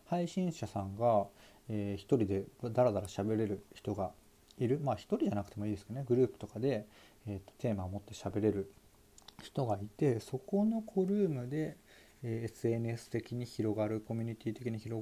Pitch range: 100-120 Hz